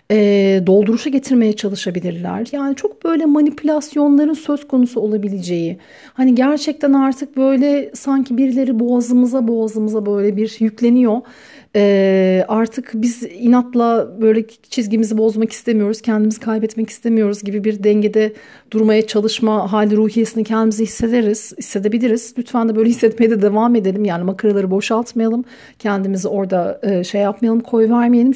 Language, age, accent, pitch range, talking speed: Turkish, 40-59, native, 215-255 Hz, 125 wpm